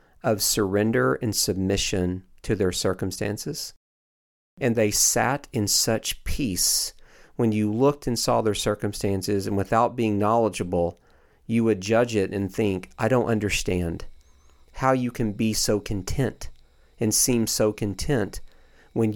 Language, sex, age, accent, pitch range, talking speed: English, male, 40-59, American, 95-115 Hz, 140 wpm